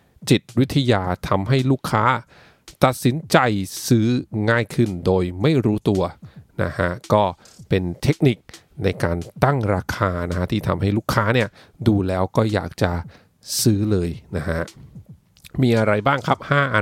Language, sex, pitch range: English, male, 100-125 Hz